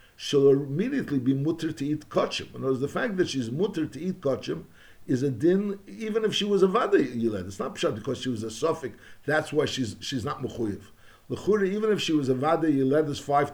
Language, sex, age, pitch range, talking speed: English, male, 50-69, 125-170 Hz, 230 wpm